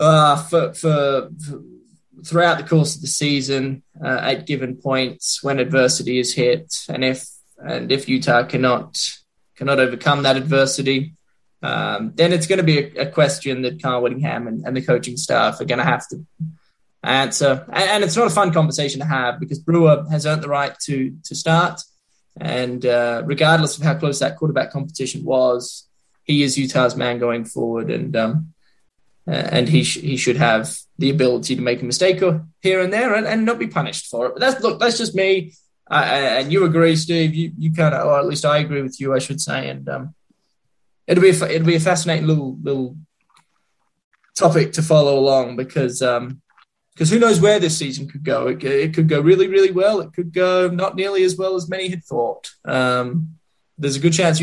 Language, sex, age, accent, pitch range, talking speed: English, male, 10-29, Australian, 130-170 Hz, 205 wpm